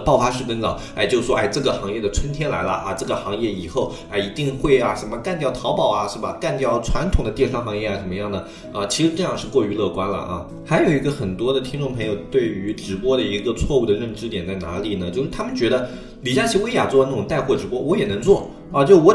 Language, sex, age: Chinese, male, 20-39